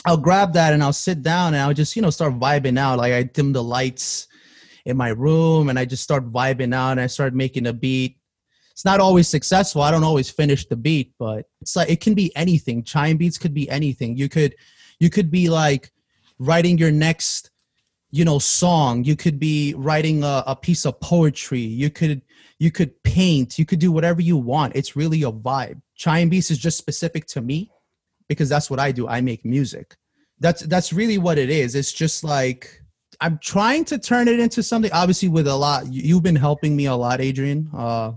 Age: 30-49